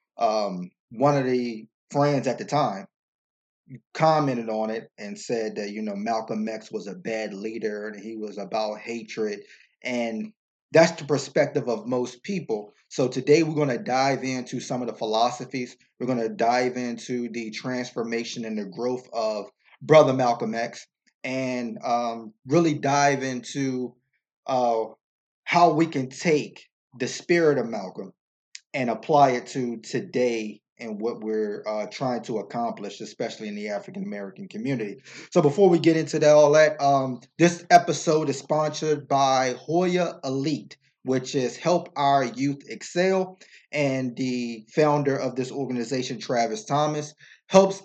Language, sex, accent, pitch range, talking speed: English, male, American, 115-150 Hz, 150 wpm